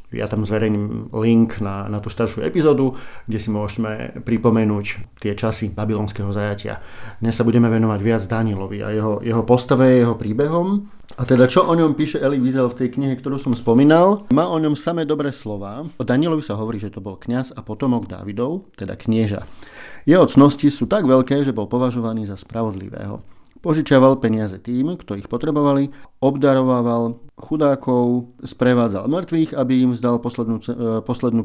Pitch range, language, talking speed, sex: 110-135 Hz, Slovak, 165 wpm, male